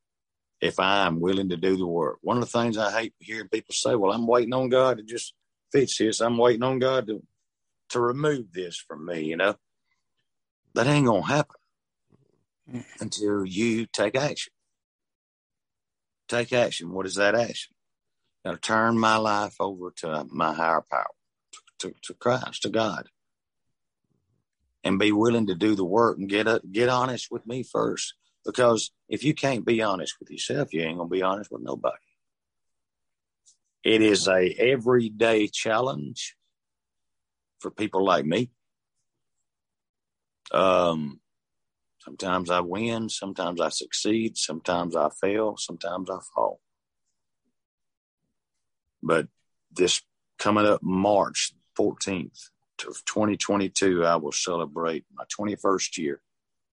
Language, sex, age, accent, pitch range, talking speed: English, male, 50-69, American, 95-115 Hz, 140 wpm